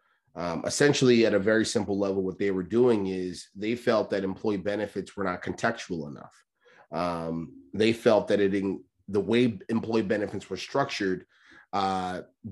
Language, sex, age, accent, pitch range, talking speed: English, male, 30-49, American, 100-115 Hz, 165 wpm